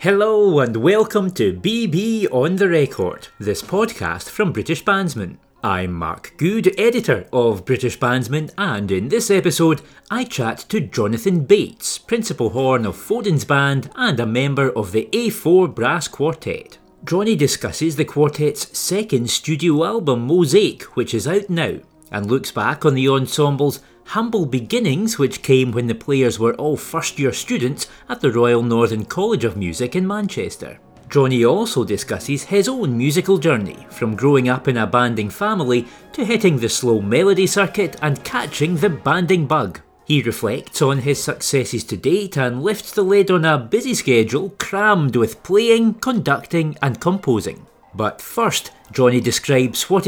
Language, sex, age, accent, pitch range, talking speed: English, male, 40-59, British, 125-195 Hz, 155 wpm